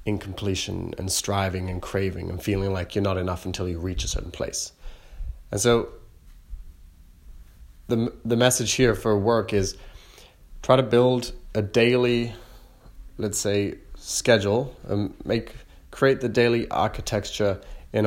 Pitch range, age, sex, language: 95-115 Hz, 20-39, male, English